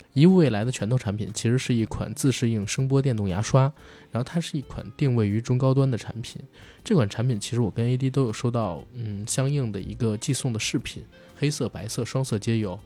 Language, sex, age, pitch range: Chinese, male, 20-39, 110-135 Hz